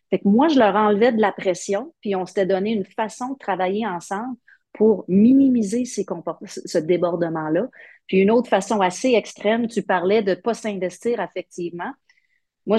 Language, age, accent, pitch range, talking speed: French, 40-59, Canadian, 180-235 Hz, 180 wpm